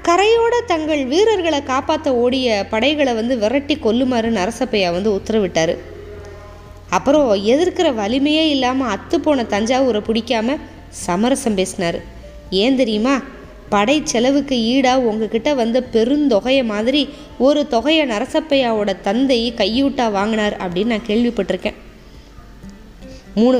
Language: Tamil